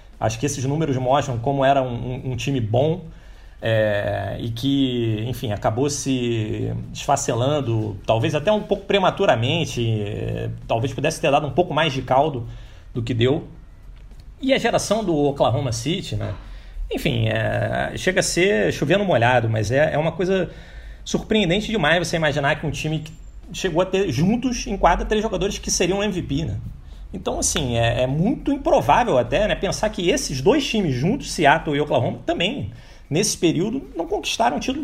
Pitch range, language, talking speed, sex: 120-180 Hz, Portuguese, 165 wpm, male